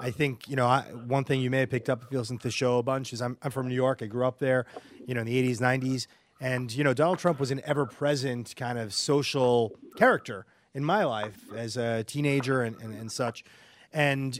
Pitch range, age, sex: 130-175 Hz, 30-49, male